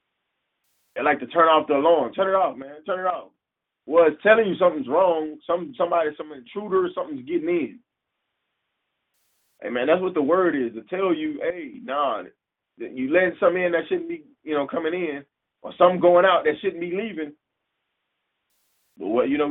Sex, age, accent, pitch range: male, 20-39, American, 115-180 Hz